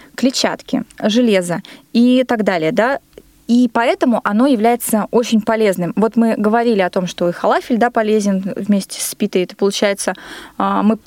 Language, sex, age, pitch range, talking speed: Russian, female, 20-39, 200-255 Hz, 150 wpm